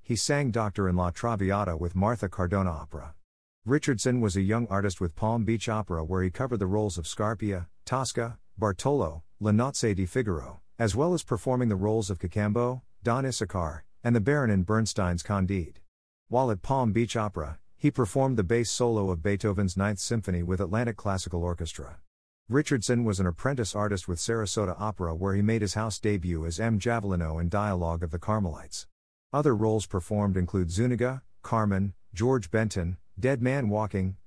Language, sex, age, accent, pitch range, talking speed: English, male, 50-69, American, 90-115 Hz, 175 wpm